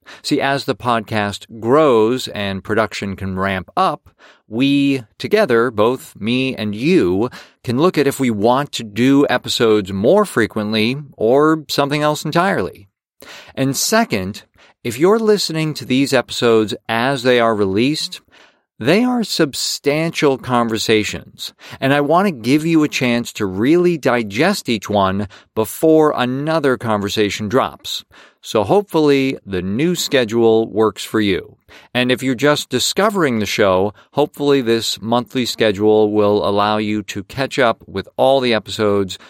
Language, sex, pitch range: English, male, 105-145 Hz